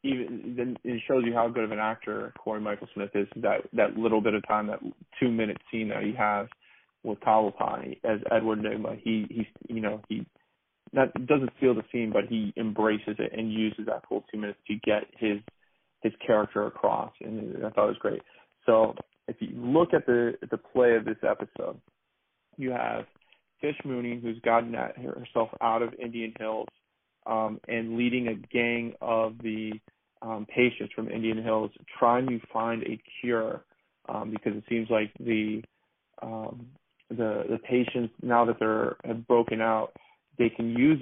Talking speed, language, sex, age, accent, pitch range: 180 wpm, English, male, 30-49, American, 110-120 Hz